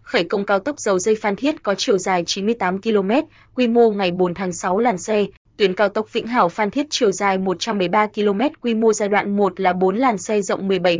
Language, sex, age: Vietnamese, female, 20-39